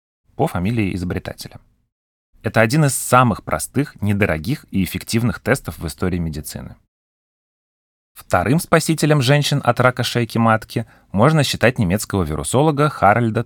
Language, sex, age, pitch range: Russian, male, 30-49, 85-120 Hz